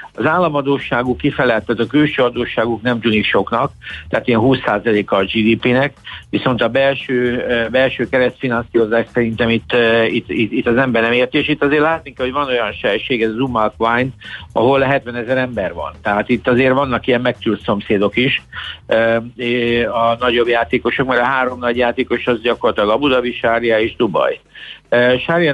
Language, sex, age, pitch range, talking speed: Hungarian, male, 60-79, 110-130 Hz, 165 wpm